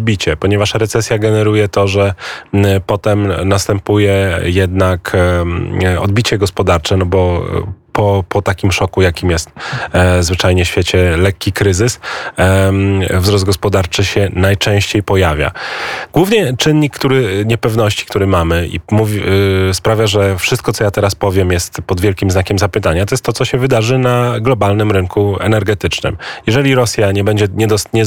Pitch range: 95-105 Hz